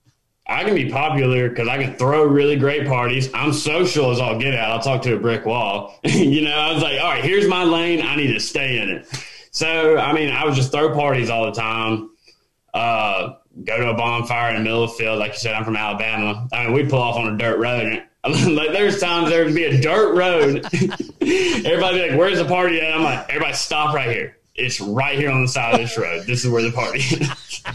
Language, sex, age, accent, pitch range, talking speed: English, male, 20-39, American, 120-160 Hz, 245 wpm